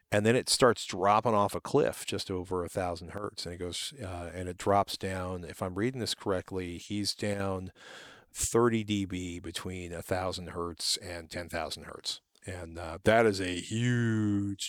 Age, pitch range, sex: 40-59, 90-110 Hz, male